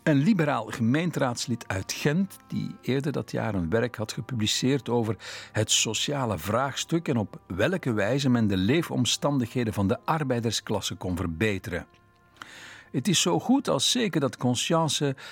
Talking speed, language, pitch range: 145 wpm, Dutch, 105-150 Hz